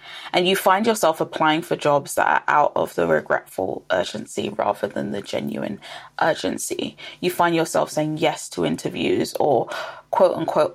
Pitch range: 155-185 Hz